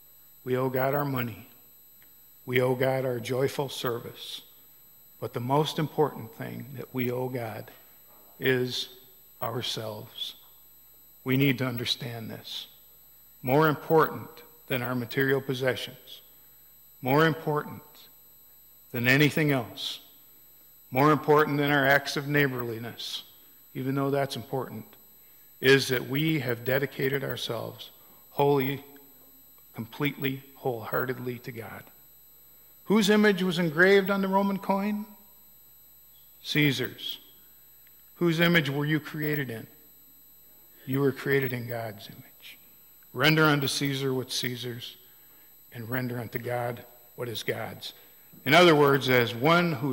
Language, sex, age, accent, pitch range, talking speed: English, male, 50-69, American, 125-150 Hz, 120 wpm